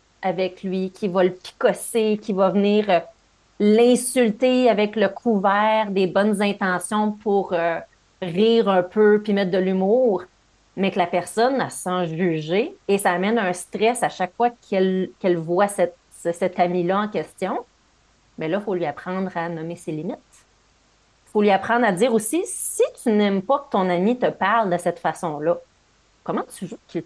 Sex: female